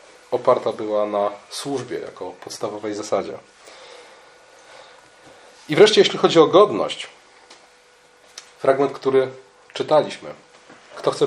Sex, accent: male, native